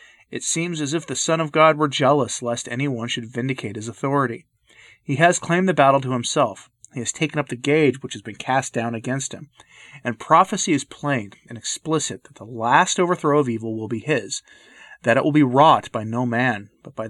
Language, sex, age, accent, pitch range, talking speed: English, male, 30-49, American, 120-150 Hz, 220 wpm